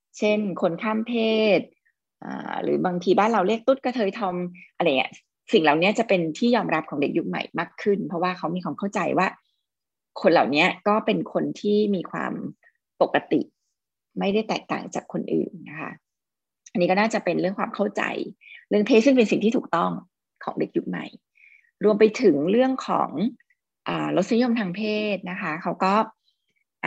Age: 20-39